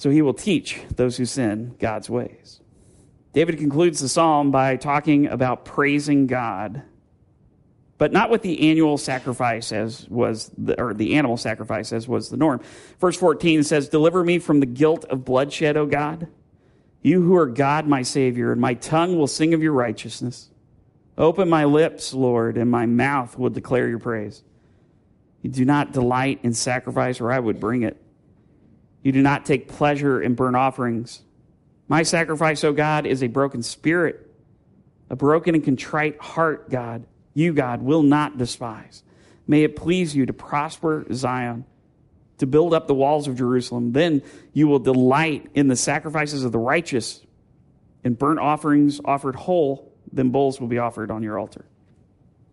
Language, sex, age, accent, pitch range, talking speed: English, male, 50-69, American, 125-155 Hz, 165 wpm